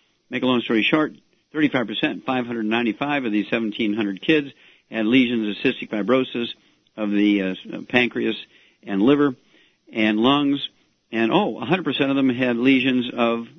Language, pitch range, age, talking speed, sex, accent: English, 110-130 Hz, 50-69, 140 wpm, male, American